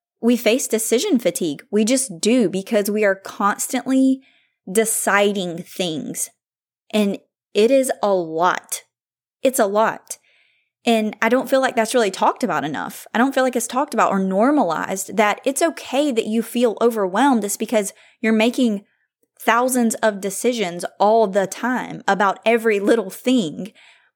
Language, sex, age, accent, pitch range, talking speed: English, female, 20-39, American, 185-240 Hz, 150 wpm